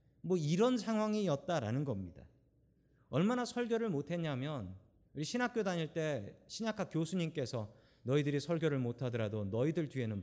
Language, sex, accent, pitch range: Korean, male, native, 115-170 Hz